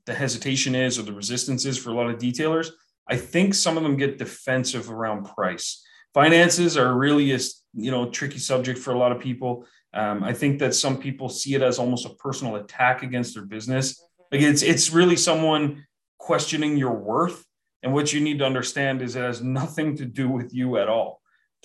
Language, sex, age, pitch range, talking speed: English, male, 30-49, 125-150 Hz, 210 wpm